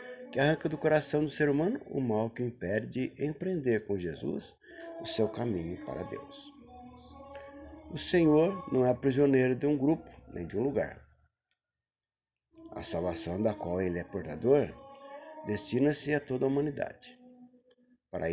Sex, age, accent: male, 60-79, Brazilian